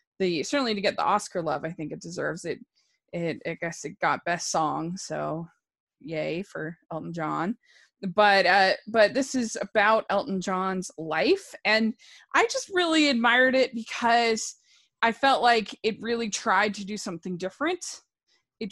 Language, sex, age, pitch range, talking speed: English, female, 20-39, 185-230 Hz, 165 wpm